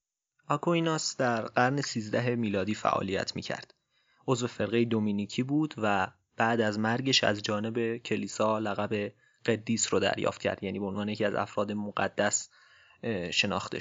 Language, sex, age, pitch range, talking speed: Persian, male, 30-49, 105-130 Hz, 130 wpm